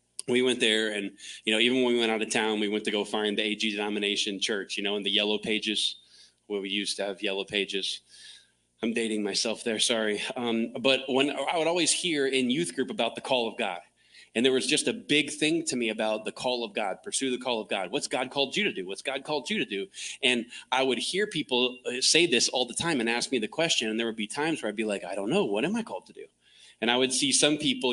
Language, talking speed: English, 270 wpm